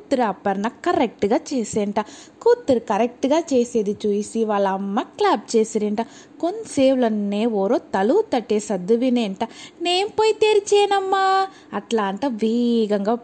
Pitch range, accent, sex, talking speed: 215-300 Hz, native, female, 105 wpm